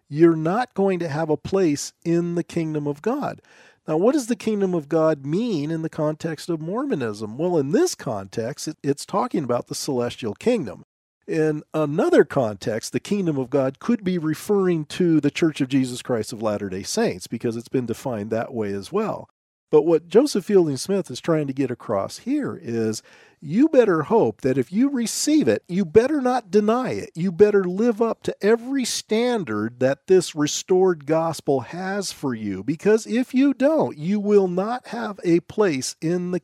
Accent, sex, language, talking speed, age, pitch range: American, male, English, 185 wpm, 40-59, 145-210 Hz